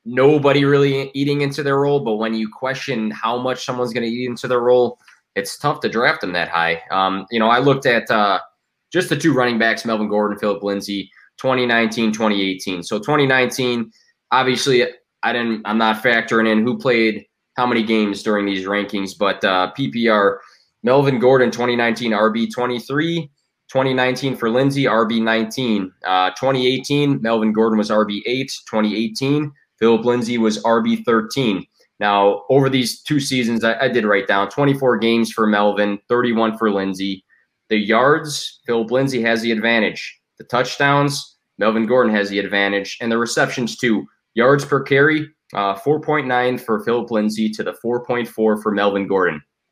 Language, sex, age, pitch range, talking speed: English, male, 20-39, 105-130 Hz, 165 wpm